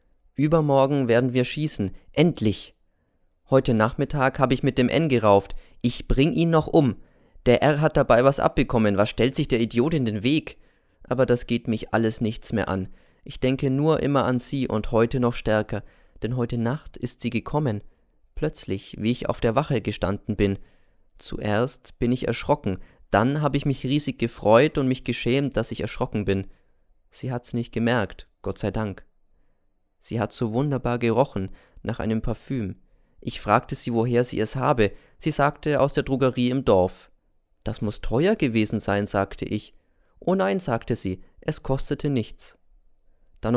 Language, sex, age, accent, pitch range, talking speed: German, male, 20-39, German, 105-135 Hz, 170 wpm